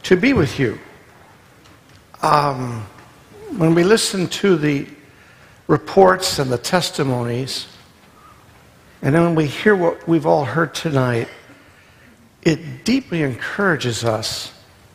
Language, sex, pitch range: English, male, 120-170 Hz